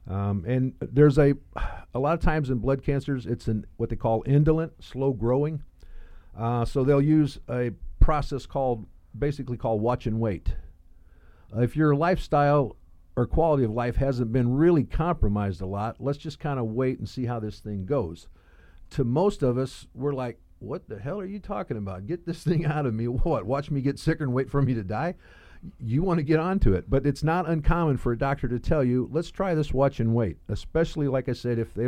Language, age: English, 50-69